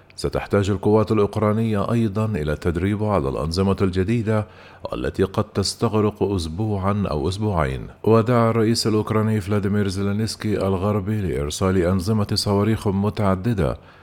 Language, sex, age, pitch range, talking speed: Arabic, male, 50-69, 95-110 Hz, 105 wpm